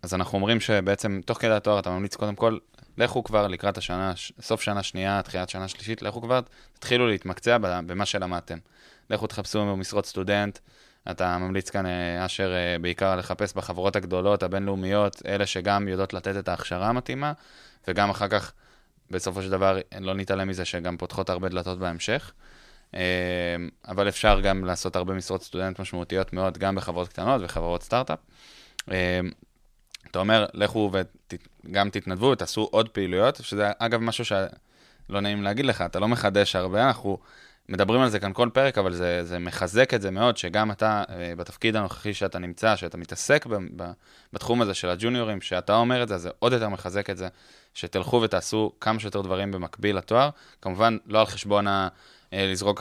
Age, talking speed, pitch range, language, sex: 20-39, 155 wpm, 90-105 Hz, Hebrew, male